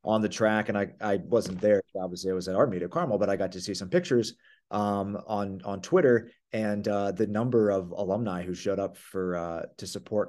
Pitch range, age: 100-130 Hz, 30-49